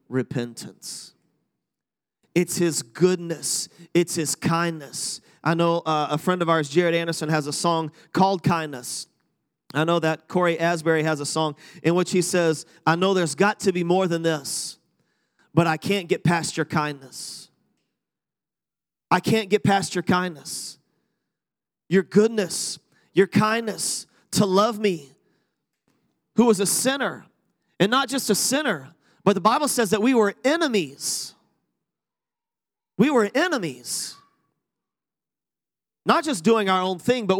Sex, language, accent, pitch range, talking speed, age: male, English, American, 160-205 Hz, 145 wpm, 30-49